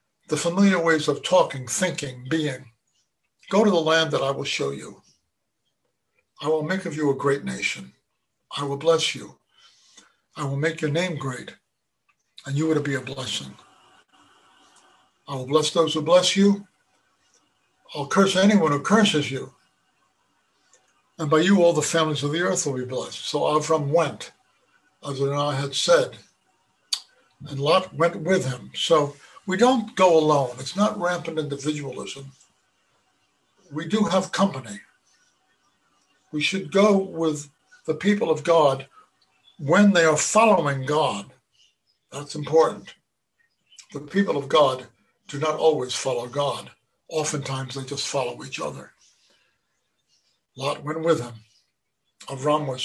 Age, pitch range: 60-79, 140-175 Hz